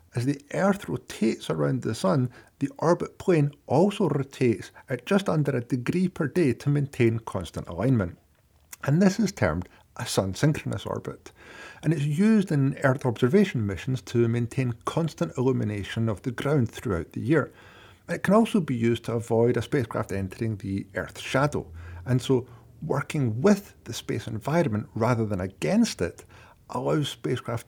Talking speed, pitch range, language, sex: 160 wpm, 110-160 Hz, English, male